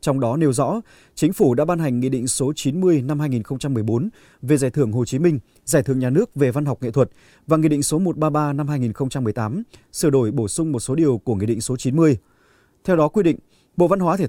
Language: Vietnamese